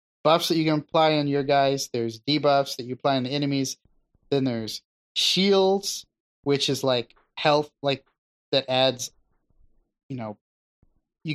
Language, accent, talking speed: English, American, 155 wpm